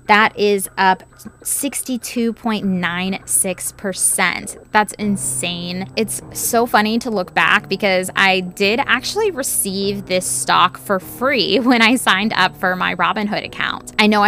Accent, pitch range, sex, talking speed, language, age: American, 185-220 Hz, female, 130 wpm, English, 20-39